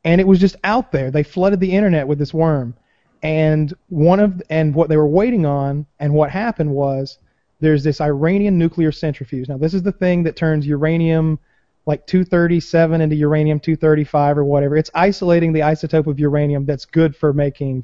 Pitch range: 145-180 Hz